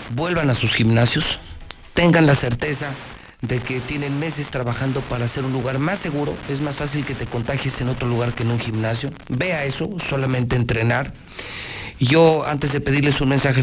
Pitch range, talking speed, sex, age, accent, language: 110-145 Hz, 180 wpm, male, 40-59, Mexican, Spanish